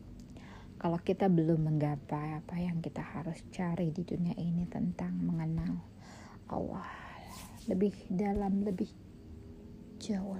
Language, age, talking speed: Indonesian, 20-39, 110 wpm